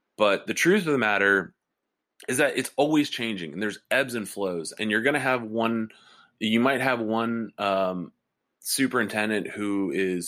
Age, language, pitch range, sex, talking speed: 20-39, English, 90-115 Hz, male, 180 wpm